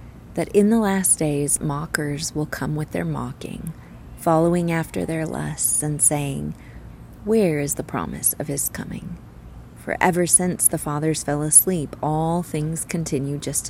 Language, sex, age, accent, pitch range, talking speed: English, female, 30-49, American, 130-170 Hz, 155 wpm